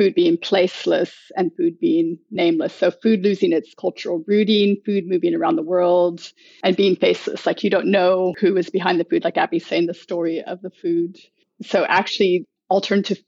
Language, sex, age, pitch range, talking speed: English, female, 30-49, 180-235 Hz, 185 wpm